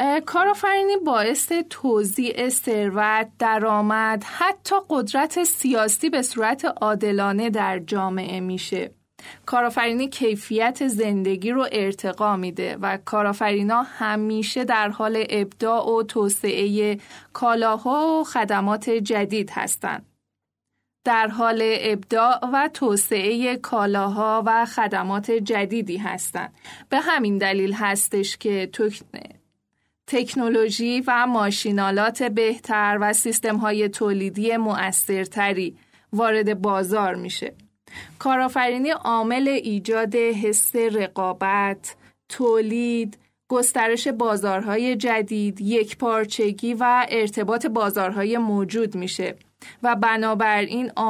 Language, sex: Persian, female